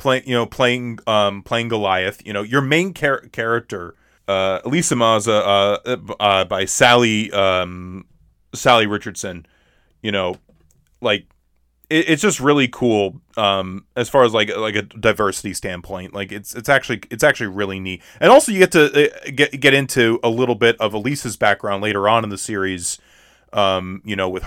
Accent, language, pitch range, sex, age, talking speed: American, English, 100-130 Hz, male, 30-49, 175 wpm